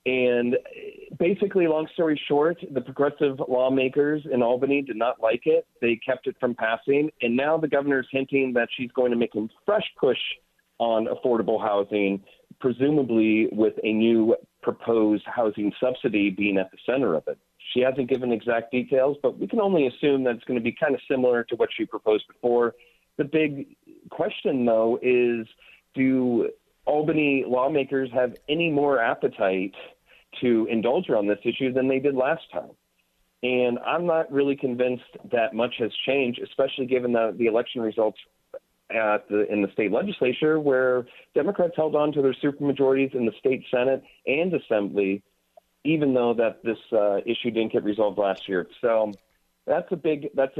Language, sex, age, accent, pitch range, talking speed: English, male, 40-59, American, 115-145 Hz, 170 wpm